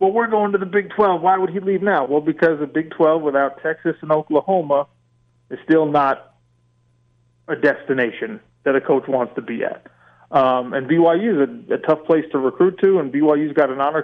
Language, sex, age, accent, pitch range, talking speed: English, male, 30-49, American, 130-155 Hz, 210 wpm